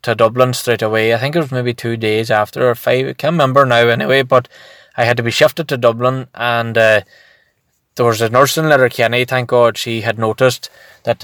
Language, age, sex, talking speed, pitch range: English, 20-39, male, 215 wpm, 115-130 Hz